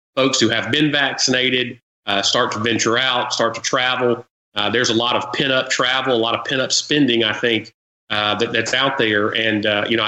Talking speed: 215 wpm